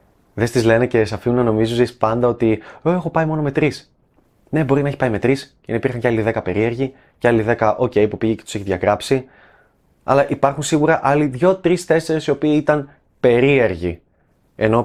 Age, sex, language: 20-39, male, Greek